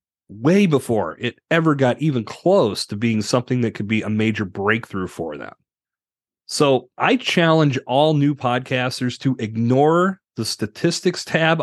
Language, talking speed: English, 150 wpm